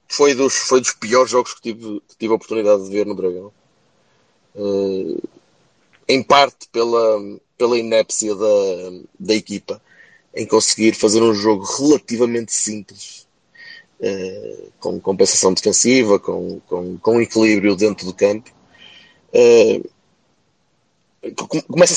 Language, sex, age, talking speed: Portuguese, male, 20-39, 110 wpm